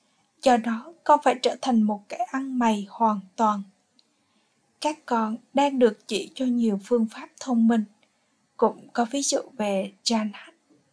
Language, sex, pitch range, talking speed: Vietnamese, female, 220-270 Hz, 160 wpm